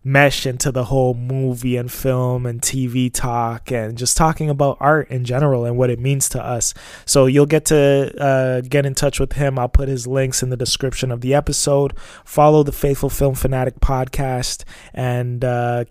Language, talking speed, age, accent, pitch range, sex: English, 190 wpm, 20-39, American, 120-140 Hz, male